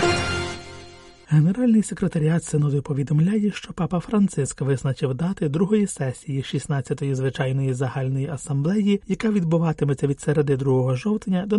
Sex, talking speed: male, 115 wpm